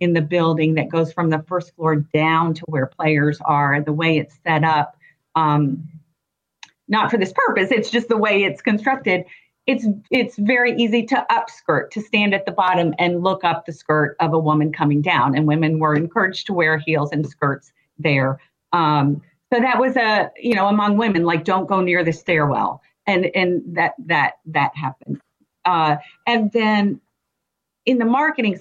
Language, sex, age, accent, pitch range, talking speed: English, female, 40-59, American, 160-210 Hz, 180 wpm